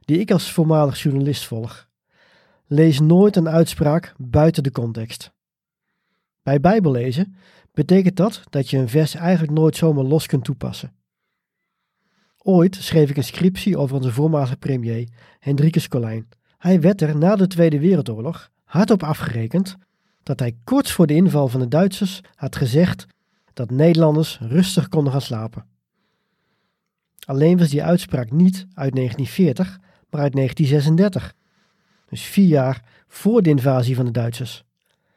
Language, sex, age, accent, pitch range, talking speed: Dutch, male, 50-69, Dutch, 135-180 Hz, 140 wpm